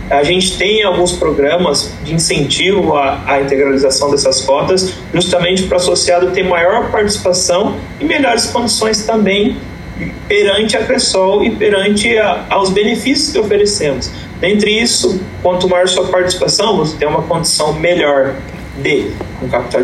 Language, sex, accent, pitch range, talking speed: Portuguese, male, Brazilian, 145-200 Hz, 135 wpm